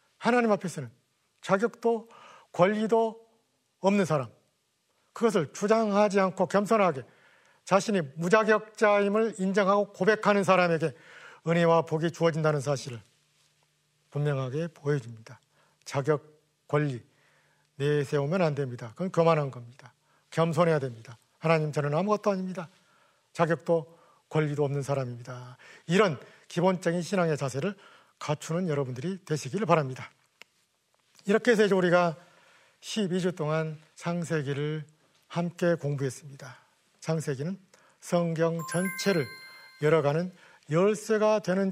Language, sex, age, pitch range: Korean, male, 40-59, 145-185 Hz